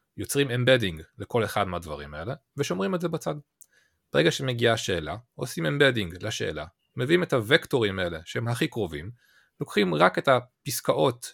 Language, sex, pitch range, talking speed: Hebrew, male, 100-145 Hz, 145 wpm